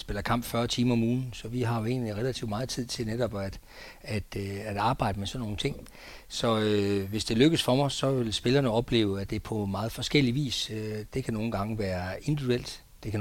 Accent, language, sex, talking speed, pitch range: native, Danish, male, 225 wpm, 105-125 Hz